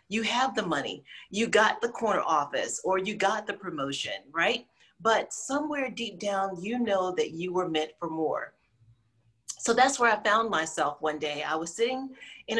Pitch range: 175-220 Hz